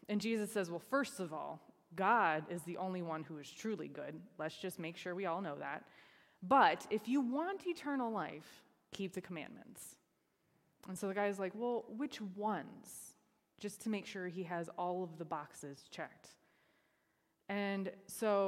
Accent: American